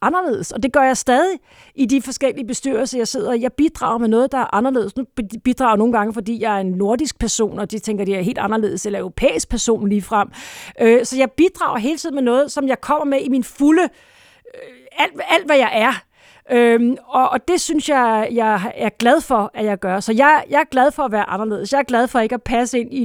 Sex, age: female, 40-59